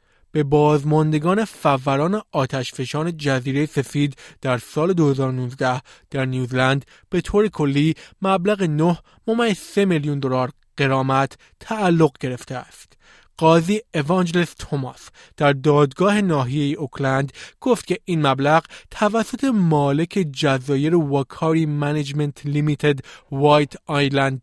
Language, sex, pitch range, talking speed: Persian, male, 140-175 Hz, 105 wpm